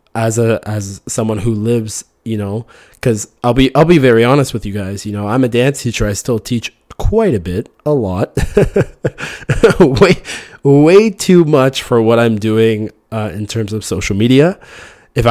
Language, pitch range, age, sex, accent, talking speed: English, 110-165 Hz, 20-39, male, American, 185 wpm